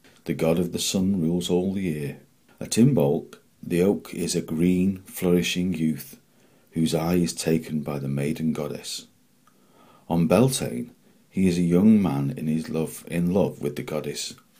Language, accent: English, British